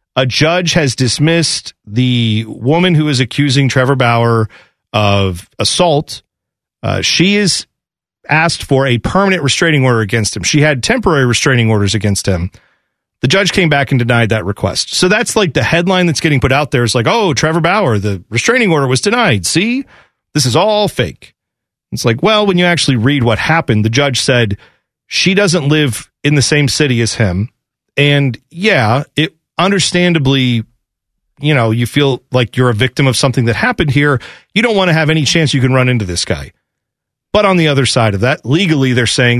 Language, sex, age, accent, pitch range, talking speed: English, male, 40-59, American, 115-155 Hz, 190 wpm